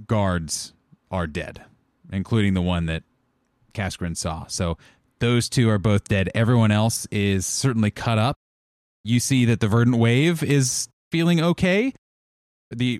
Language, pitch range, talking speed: English, 100-130 Hz, 145 wpm